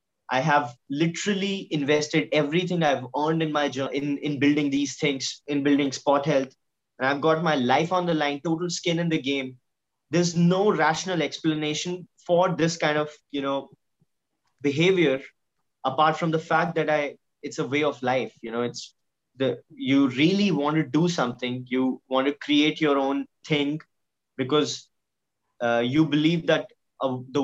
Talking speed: 170 wpm